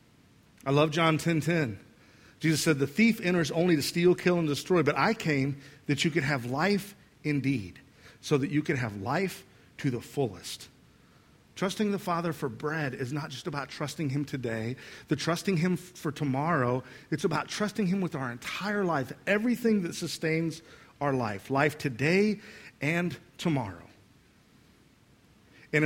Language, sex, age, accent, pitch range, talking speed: English, male, 50-69, American, 135-175 Hz, 160 wpm